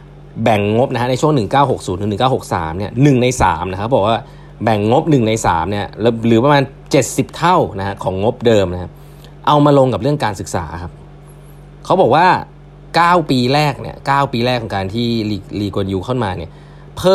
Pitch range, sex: 100-145 Hz, male